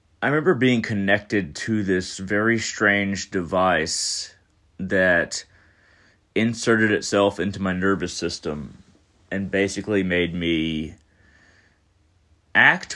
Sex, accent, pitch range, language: male, American, 90-105 Hz, English